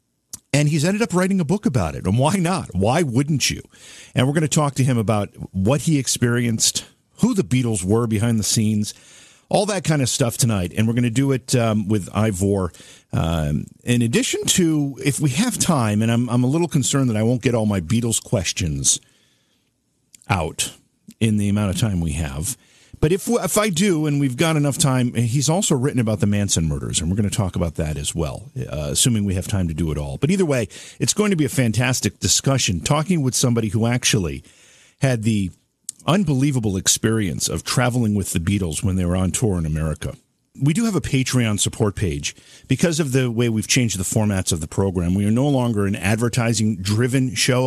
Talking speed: 215 wpm